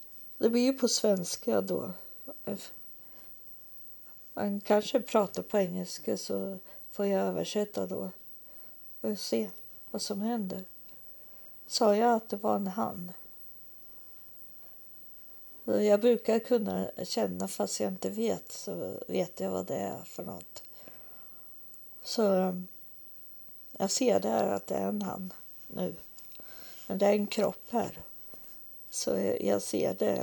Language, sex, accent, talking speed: Swedish, female, native, 125 wpm